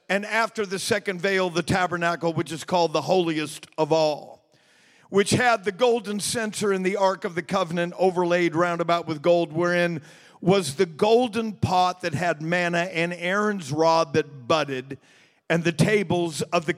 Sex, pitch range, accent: male, 175-215 Hz, American